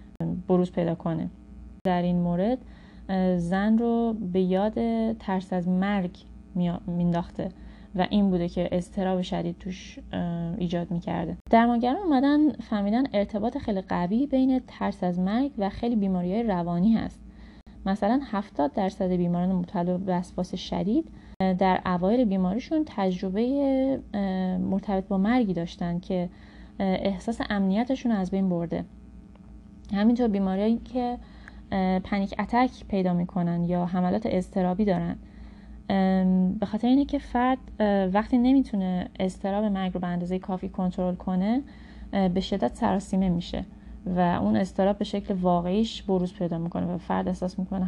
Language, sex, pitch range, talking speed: Persian, female, 180-215 Hz, 130 wpm